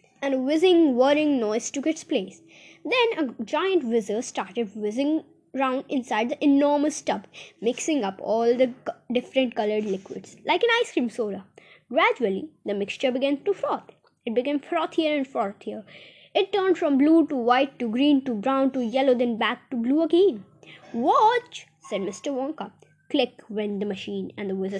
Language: Hindi